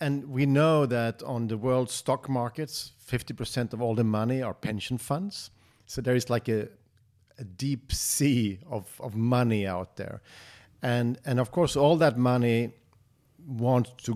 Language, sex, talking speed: English, male, 165 wpm